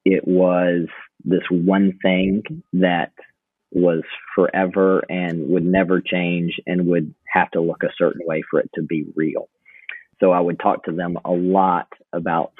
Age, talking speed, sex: 40-59, 160 wpm, male